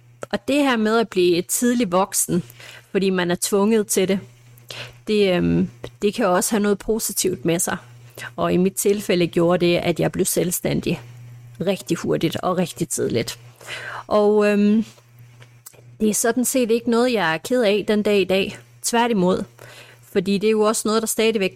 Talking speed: 180 wpm